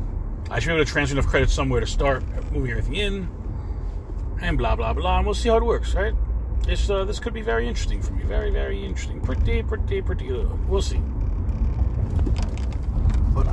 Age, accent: 40-59, American